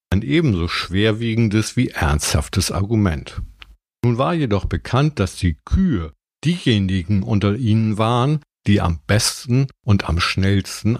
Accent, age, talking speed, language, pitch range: German, 50-69, 125 wpm, German, 90-120 Hz